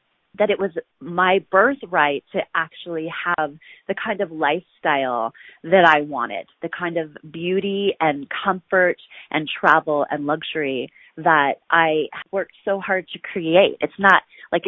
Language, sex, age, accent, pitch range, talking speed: English, female, 30-49, American, 155-190 Hz, 145 wpm